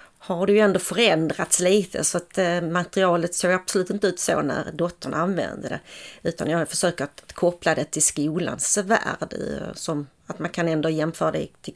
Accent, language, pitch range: native, Swedish, 160-205 Hz